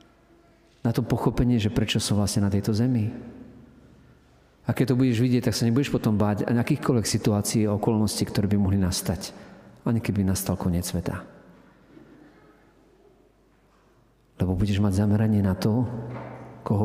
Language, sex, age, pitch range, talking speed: Slovak, male, 40-59, 100-120 Hz, 145 wpm